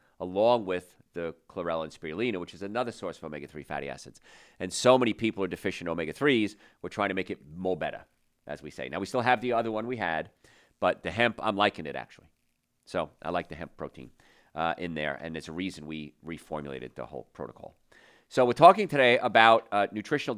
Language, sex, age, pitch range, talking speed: English, male, 40-59, 85-115 Hz, 215 wpm